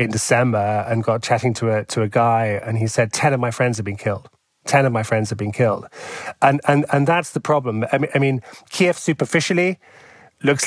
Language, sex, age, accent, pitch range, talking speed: English, male, 30-49, British, 120-150 Hz, 225 wpm